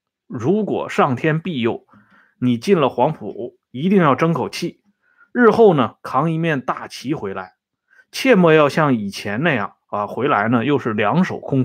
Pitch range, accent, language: 130-205 Hz, native, Chinese